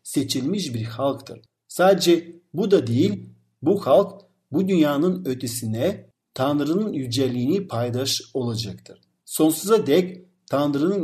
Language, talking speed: Turkish, 105 wpm